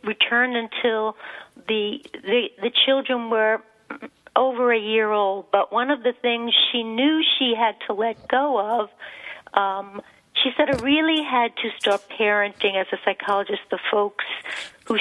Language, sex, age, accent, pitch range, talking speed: English, female, 50-69, American, 205-255 Hz, 155 wpm